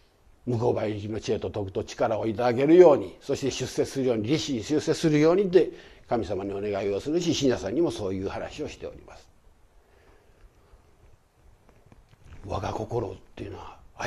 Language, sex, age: Japanese, male, 60-79